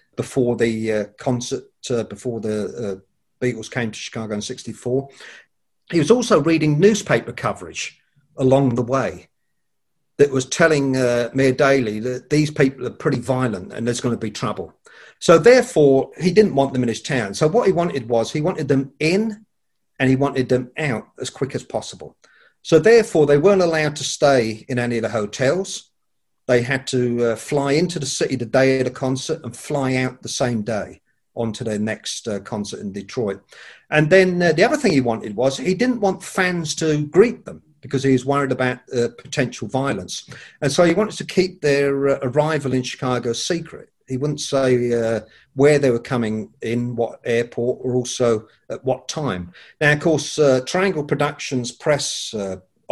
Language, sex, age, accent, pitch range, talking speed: English, male, 40-59, British, 120-150 Hz, 190 wpm